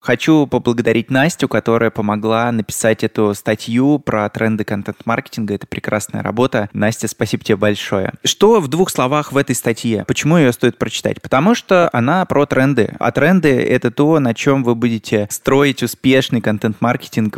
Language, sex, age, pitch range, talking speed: Russian, male, 20-39, 110-135 Hz, 155 wpm